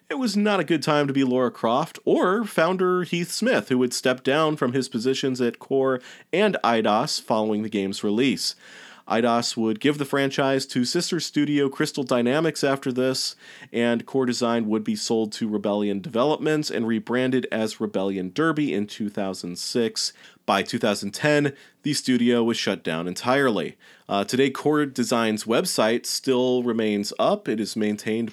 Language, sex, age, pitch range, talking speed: English, male, 30-49, 105-140 Hz, 160 wpm